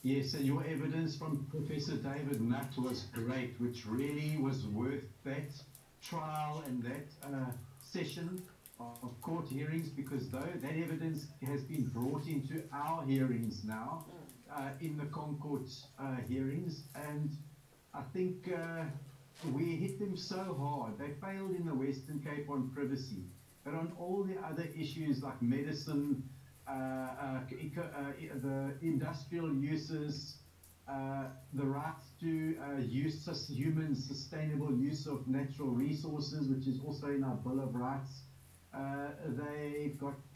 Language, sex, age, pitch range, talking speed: English, male, 70-89, 135-150 Hz, 140 wpm